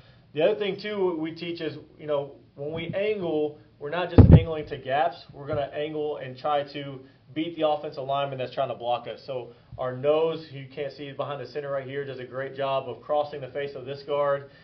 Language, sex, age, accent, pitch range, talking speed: English, male, 30-49, American, 130-150 Hz, 225 wpm